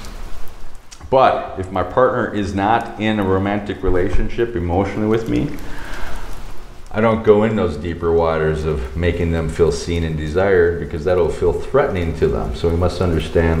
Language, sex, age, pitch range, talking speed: English, male, 40-59, 85-115 Hz, 165 wpm